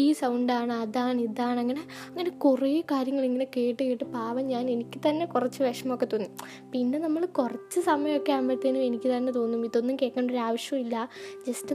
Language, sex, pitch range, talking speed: Malayalam, female, 240-290 Hz, 155 wpm